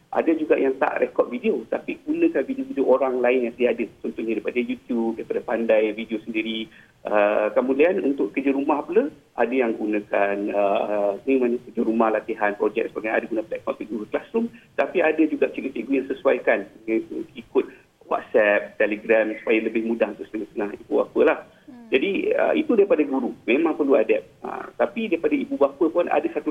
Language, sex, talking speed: Malay, male, 170 wpm